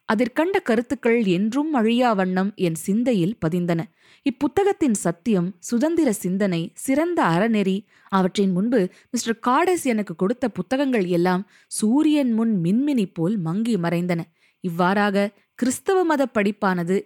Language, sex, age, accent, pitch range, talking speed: Tamil, female, 20-39, native, 180-250 Hz, 110 wpm